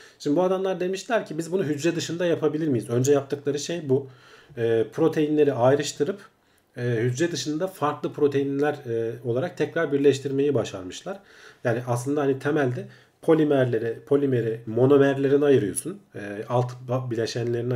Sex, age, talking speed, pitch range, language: male, 40-59, 130 wpm, 120-155 Hz, Turkish